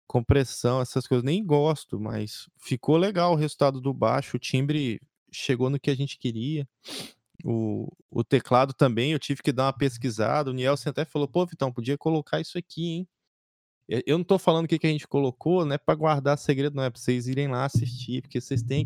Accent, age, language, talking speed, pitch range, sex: Brazilian, 20-39, Portuguese, 205 wpm, 120-145 Hz, male